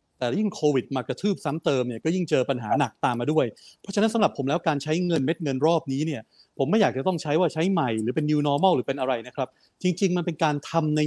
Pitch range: 135-175 Hz